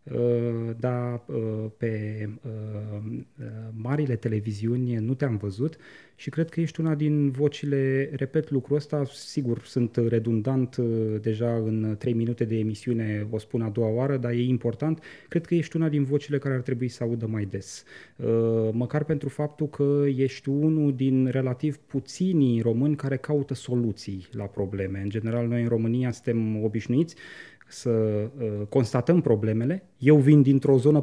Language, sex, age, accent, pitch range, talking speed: Romanian, male, 20-39, native, 110-145 Hz, 145 wpm